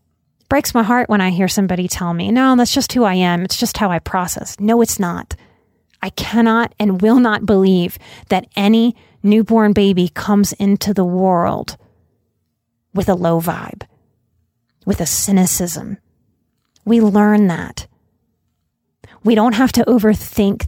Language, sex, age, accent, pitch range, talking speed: English, female, 30-49, American, 185-245 Hz, 150 wpm